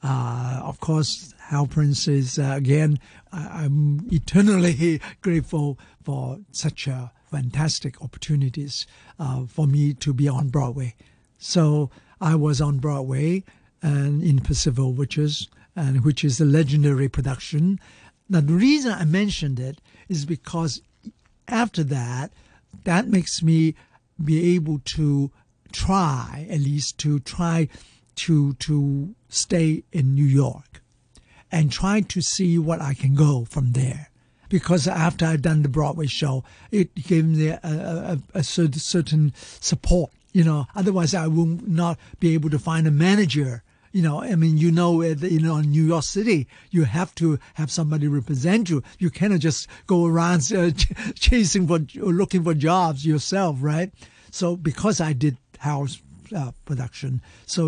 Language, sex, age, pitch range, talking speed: English, male, 60-79, 140-170 Hz, 150 wpm